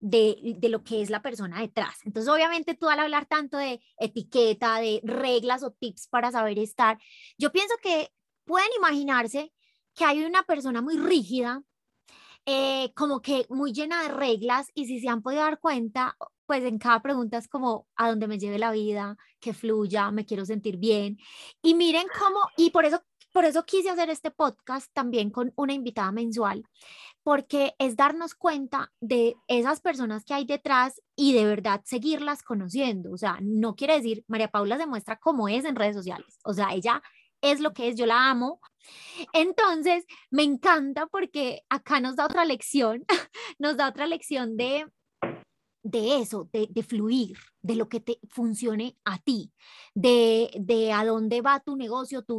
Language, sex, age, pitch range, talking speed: Spanish, female, 20-39, 220-285 Hz, 180 wpm